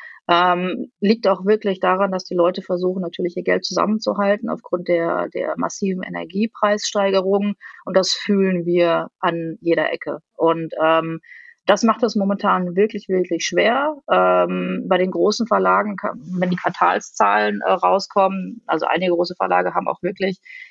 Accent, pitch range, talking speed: German, 175-210 Hz, 150 wpm